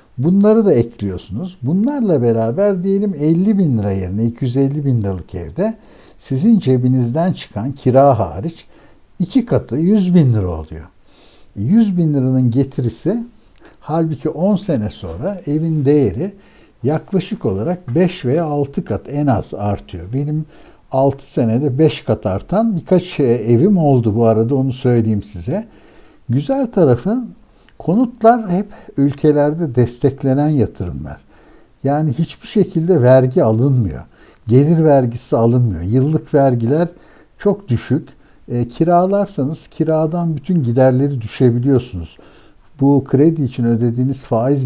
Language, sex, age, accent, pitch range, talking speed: Turkish, male, 60-79, native, 115-170 Hz, 120 wpm